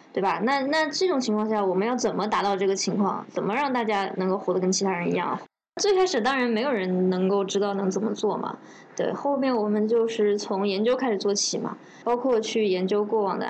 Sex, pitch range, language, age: female, 205-275 Hz, Chinese, 20-39